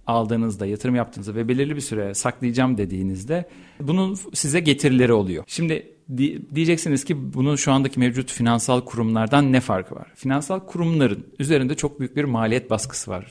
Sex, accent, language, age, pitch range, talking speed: male, native, Turkish, 50-69, 115-140 Hz, 155 wpm